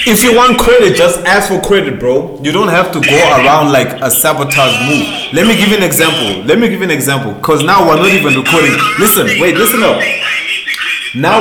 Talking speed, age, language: 220 wpm, 20-39, English